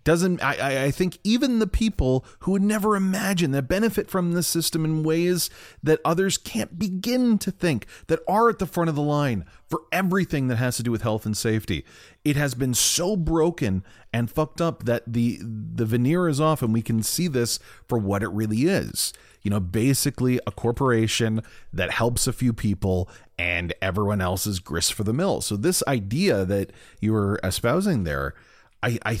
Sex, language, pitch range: male, English, 110-160 Hz